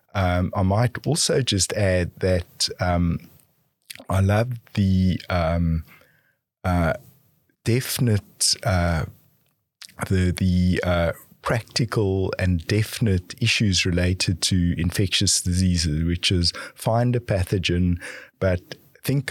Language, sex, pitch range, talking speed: English, male, 90-105 Hz, 105 wpm